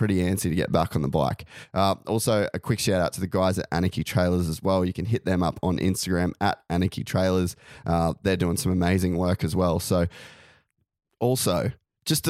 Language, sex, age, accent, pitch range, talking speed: English, male, 20-39, Australian, 90-110 Hz, 215 wpm